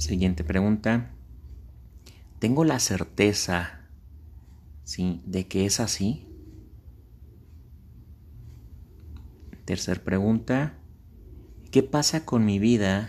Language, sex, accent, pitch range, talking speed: Spanish, male, Mexican, 85-100 Hz, 75 wpm